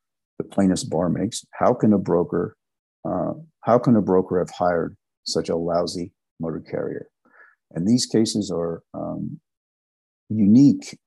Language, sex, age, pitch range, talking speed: English, male, 50-69, 90-105 Hz, 135 wpm